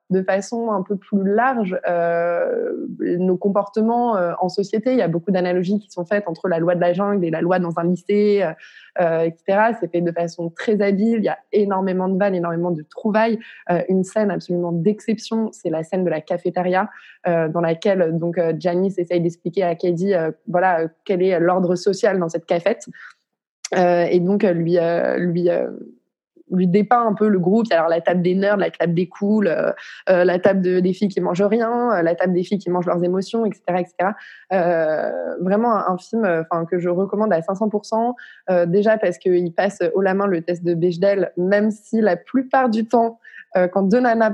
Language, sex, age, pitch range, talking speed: French, female, 20-39, 175-210 Hz, 215 wpm